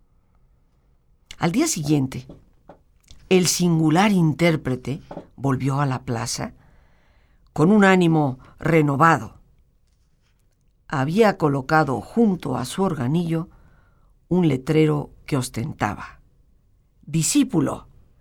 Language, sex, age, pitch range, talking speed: Spanish, female, 50-69, 130-175 Hz, 80 wpm